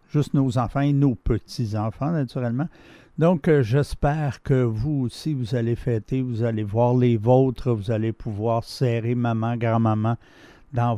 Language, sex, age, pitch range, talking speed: French, male, 60-79, 115-150 Hz, 155 wpm